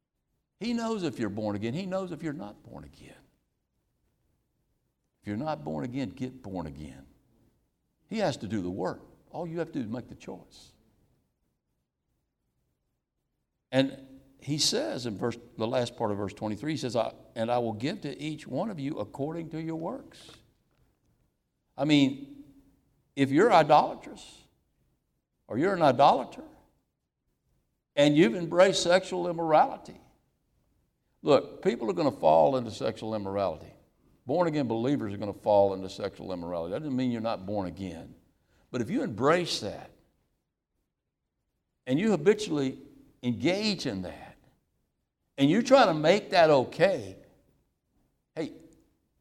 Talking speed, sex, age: 150 wpm, male, 60-79